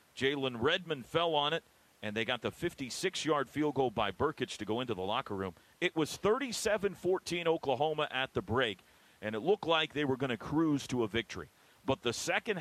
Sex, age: male, 40-59